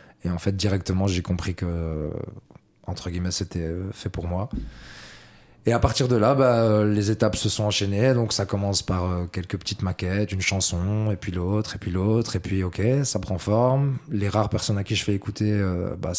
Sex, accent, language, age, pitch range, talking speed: male, French, English, 20-39, 95-110 Hz, 200 wpm